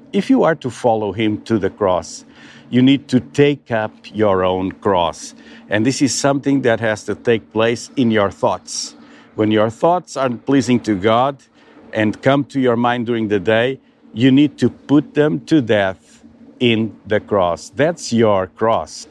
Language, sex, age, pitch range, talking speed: English, male, 50-69, 110-140 Hz, 180 wpm